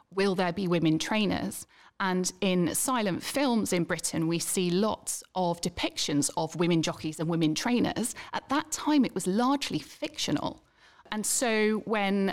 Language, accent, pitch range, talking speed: English, British, 175-235 Hz, 155 wpm